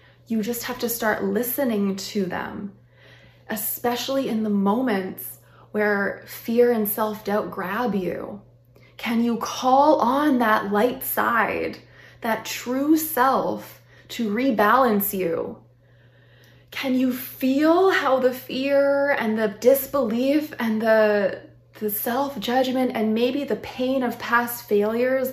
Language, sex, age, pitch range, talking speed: English, female, 20-39, 200-250 Hz, 120 wpm